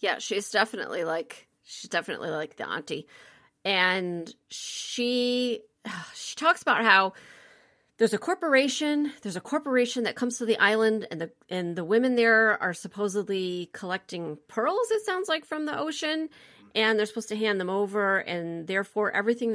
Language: English